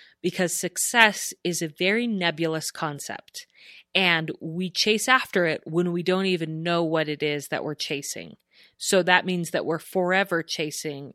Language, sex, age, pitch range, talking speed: English, female, 30-49, 160-190 Hz, 160 wpm